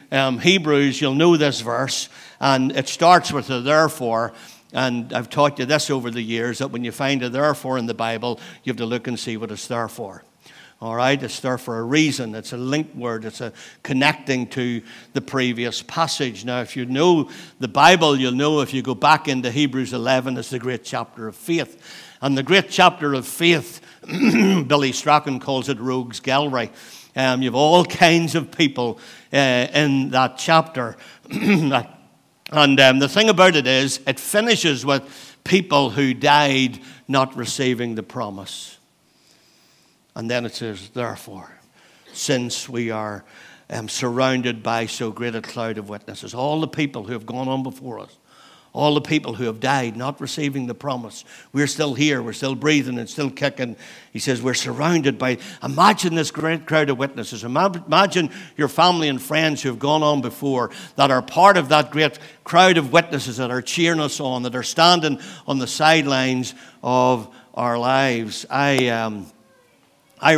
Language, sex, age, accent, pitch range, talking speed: English, male, 60-79, Irish, 120-150 Hz, 180 wpm